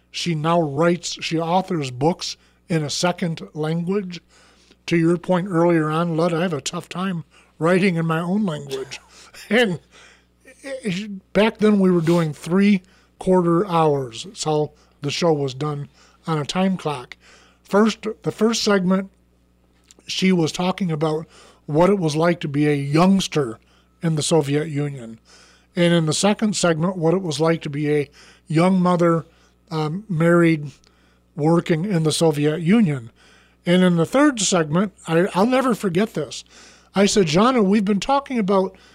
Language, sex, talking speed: English, male, 160 wpm